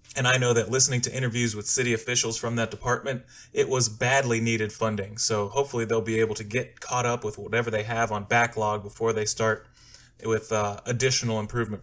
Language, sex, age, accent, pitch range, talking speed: English, male, 30-49, American, 110-125 Hz, 205 wpm